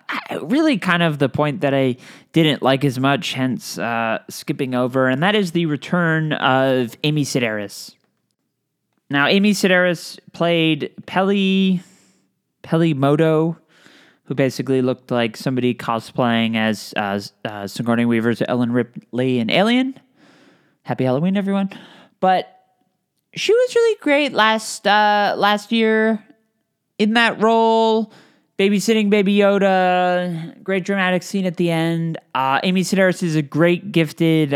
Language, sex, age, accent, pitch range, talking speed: English, male, 20-39, American, 150-215 Hz, 135 wpm